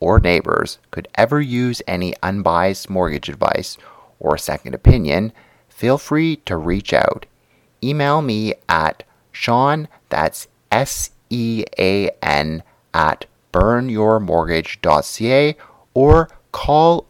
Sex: male